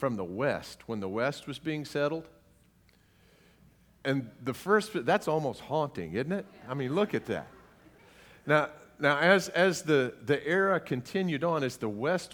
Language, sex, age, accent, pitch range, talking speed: English, male, 50-69, American, 120-165 Hz, 160 wpm